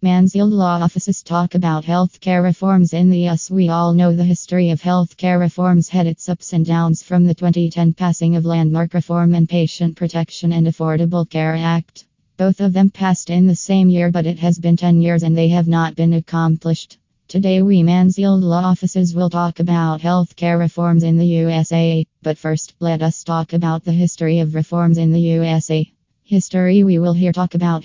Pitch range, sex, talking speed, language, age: 165-180 Hz, female, 200 wpm, English, 20-39